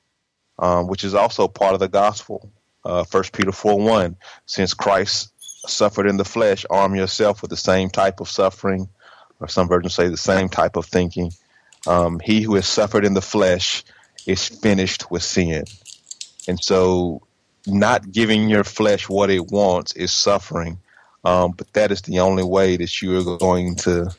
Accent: American